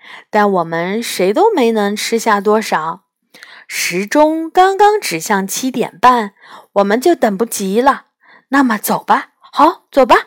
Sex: female